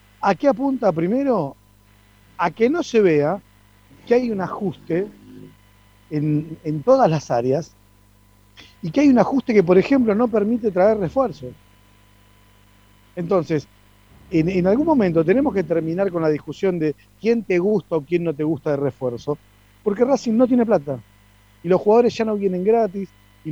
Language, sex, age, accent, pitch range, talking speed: Spanish, male, 40-59, Argentinian, 120-190 Hz, 165 wpm